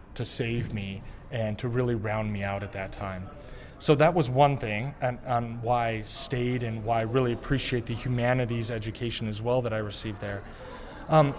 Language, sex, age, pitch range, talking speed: English, male, 30-49, 115-150 Hz, 200 wpm